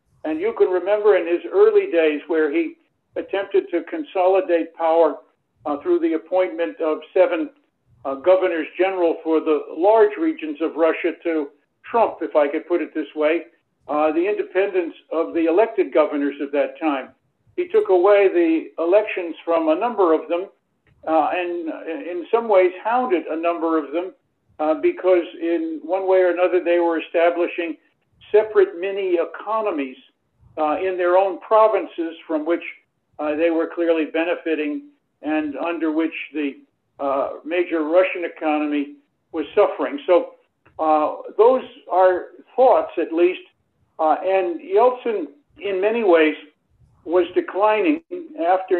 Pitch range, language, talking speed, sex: 155-210 Hz, English, 145 wpm, male